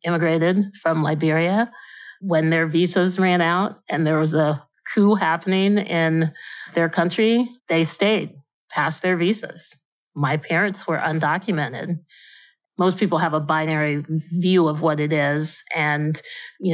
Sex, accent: female, American